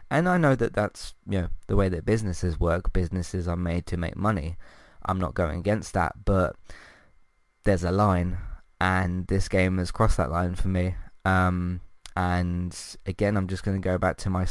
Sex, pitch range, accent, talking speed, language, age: male, 90-100 Hz, British, 195 wpm, English, 20-39